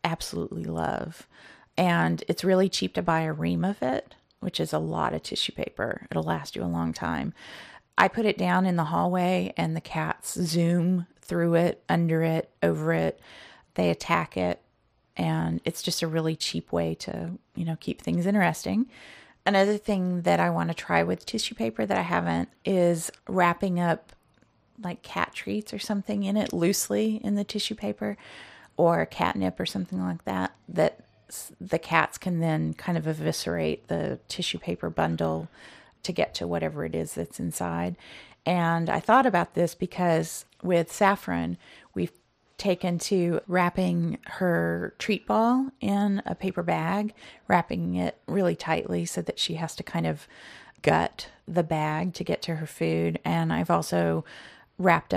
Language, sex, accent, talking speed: English, female, American, 170 wpm